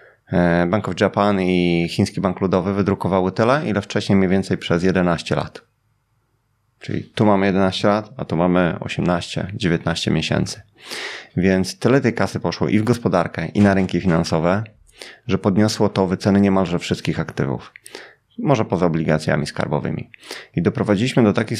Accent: native